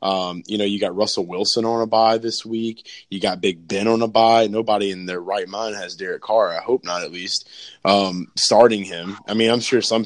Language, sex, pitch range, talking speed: English, male, 105-125 Hz, 240 wpm